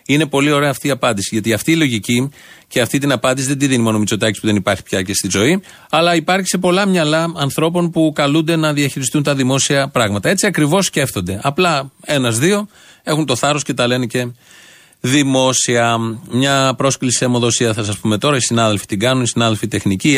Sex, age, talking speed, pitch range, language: male, 40-59, 200 wpm, 115-155 Hz, Greek